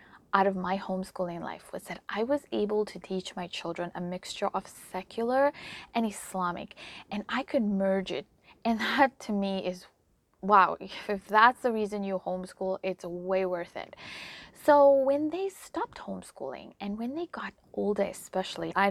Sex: female